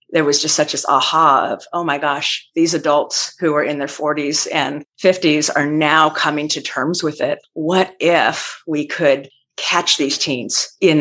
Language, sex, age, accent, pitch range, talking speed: English, female, 40-59, American, 145-170 Hz, 185 wpm